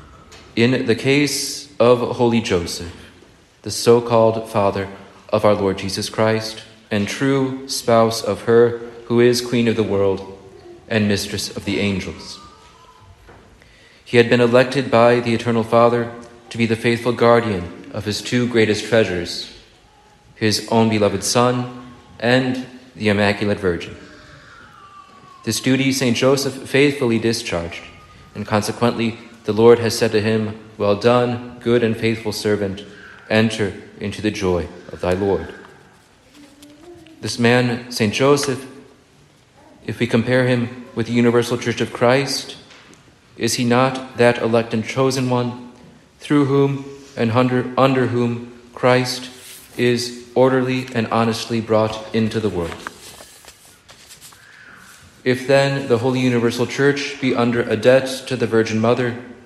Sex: male